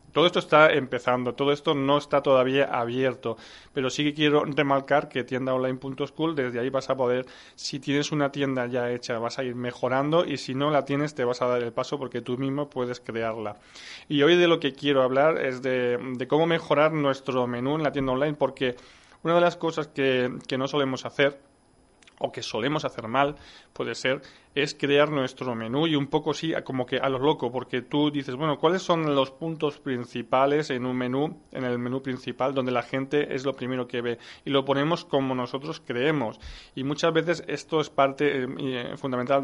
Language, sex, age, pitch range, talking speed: Spanish, male, 30-49, 125-145 Hz, 205 wpm